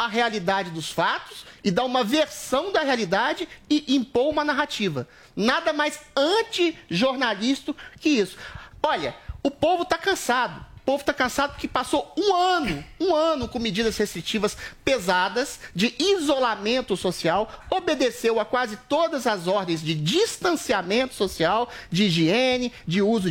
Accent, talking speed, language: Brazilian, 140 wpm, Portuguese